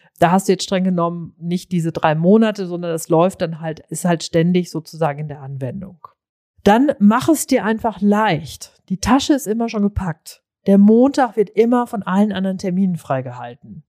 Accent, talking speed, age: German, 185 wpm, 40-59